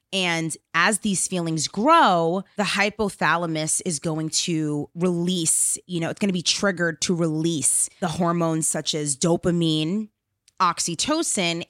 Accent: American